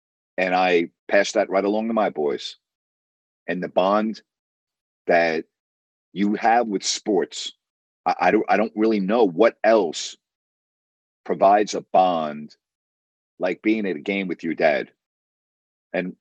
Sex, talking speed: male, 140 wpm